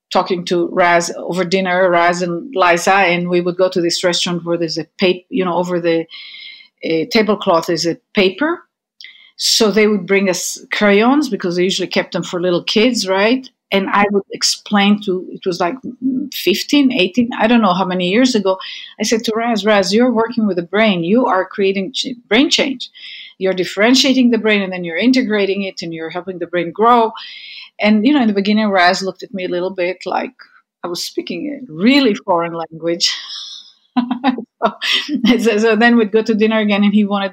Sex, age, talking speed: female, 50-69, 195 wpm